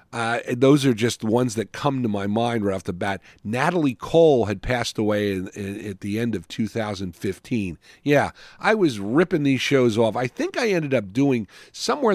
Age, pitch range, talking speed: 50-69, 110-170 Hz, 195 wpm